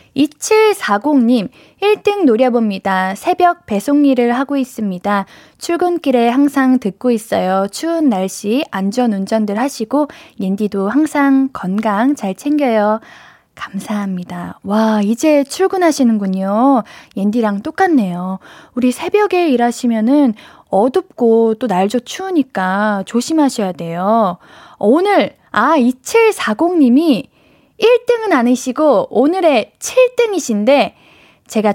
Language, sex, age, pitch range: Korean, female, 10-29, 210-315 Hz